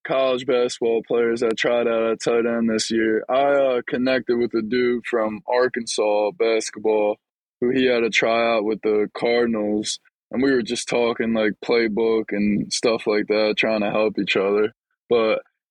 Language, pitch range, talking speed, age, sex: English, 110-125 Hz, 170 wpm, 20-39, male